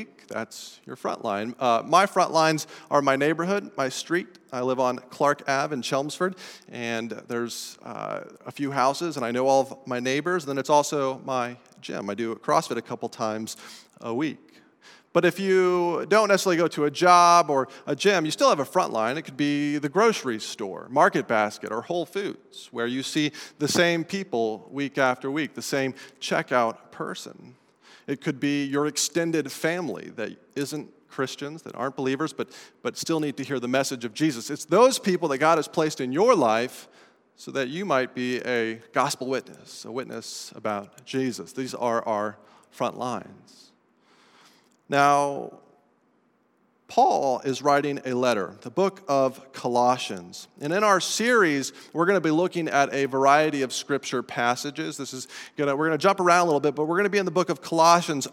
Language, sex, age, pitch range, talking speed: English, male, 40-59, 130-165 Hz, 190 wpm